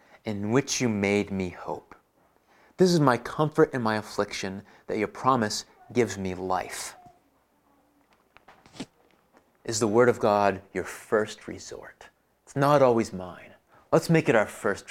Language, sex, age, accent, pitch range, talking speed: English, male, 30-49, American, 100-140 Hz, 145 wpm